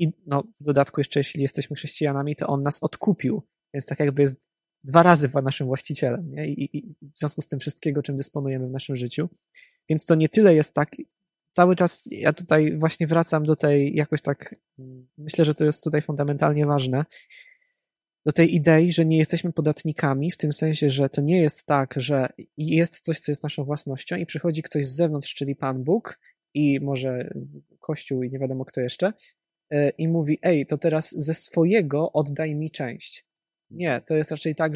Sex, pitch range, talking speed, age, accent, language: male, 140-165 Hz, 185 wpm, 20-39, native, Polish